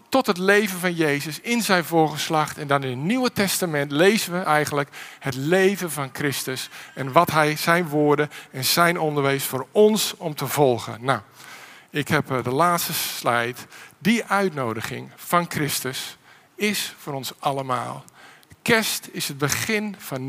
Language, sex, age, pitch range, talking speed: Dutch, male, 50-69, 135-175 Hz, 155 wpm